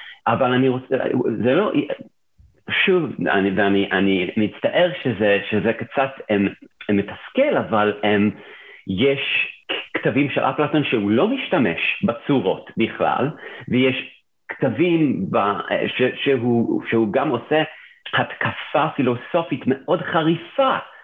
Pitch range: 100-140 Hz